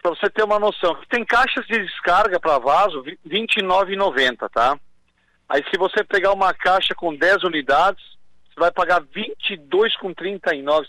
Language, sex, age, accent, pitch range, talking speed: Portuguese, male, 50-69, Brazilian, 185-225 Hz, 160 wpm